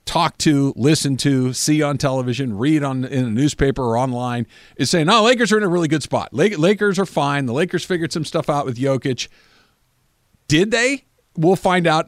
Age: 50-69